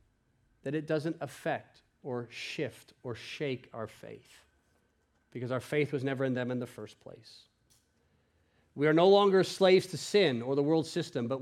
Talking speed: 175 wpm